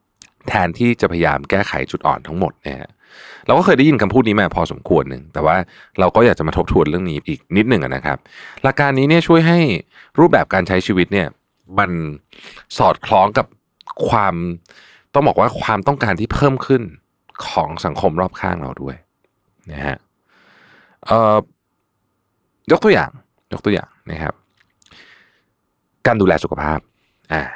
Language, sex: Thai, male